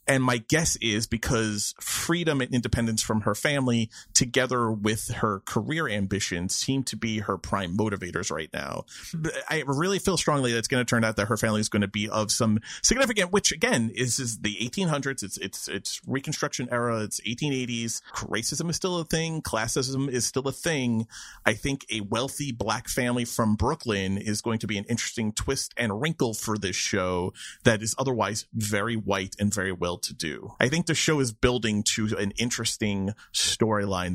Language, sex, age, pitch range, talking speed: English, male, 30-49, 100-135 Hz, 190 wpm